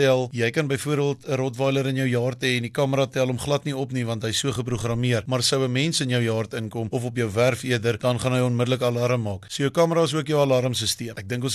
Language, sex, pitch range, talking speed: English, male, 120-140 Hz, 270 wpm